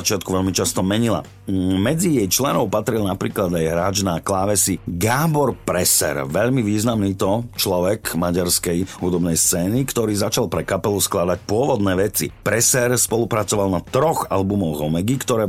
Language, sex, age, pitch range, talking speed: Slovak, male, 50-69, 90-115 Hz, 140 wpm